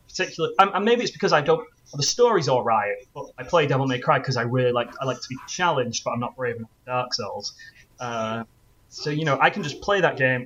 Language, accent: English, British